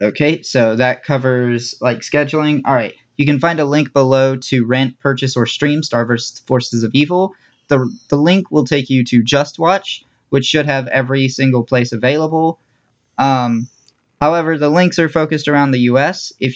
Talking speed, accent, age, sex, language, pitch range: 180 wpm, American, 20-39, male, English, 125-150 Hz